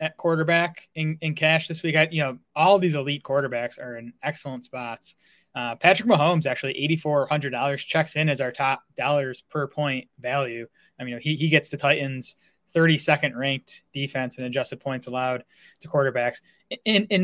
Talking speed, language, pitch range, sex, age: 195 wpm, English, 130-155 Hz, male, 20-39